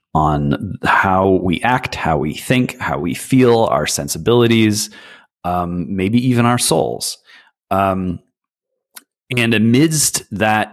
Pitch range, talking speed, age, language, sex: 85-115 Hz, 115 wpm, 30-49, English, male